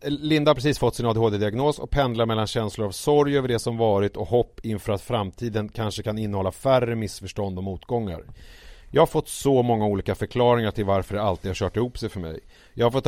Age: 40-59